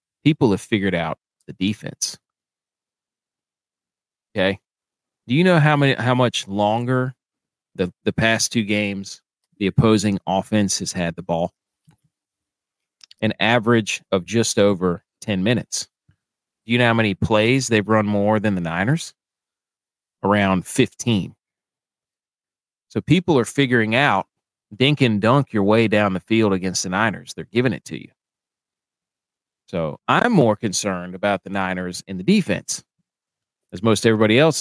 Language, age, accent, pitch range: English, 30-49, American, 95-125 Hz